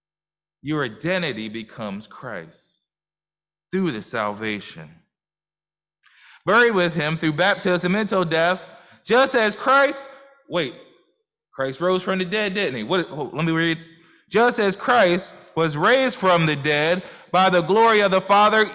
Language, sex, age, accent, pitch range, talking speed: English, male, 20-39, American, 160-205 Hz, 135 wpm